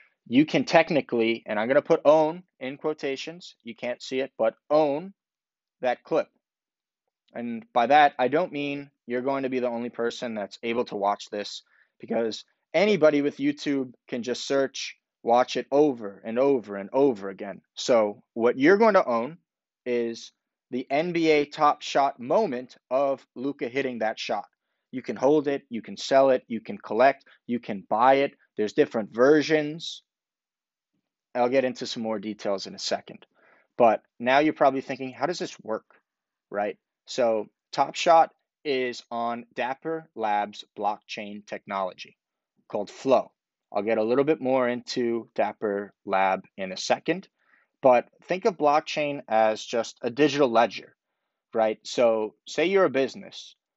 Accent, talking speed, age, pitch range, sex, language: American, 160 wpm, 20-39, 115-150 Hz, male, English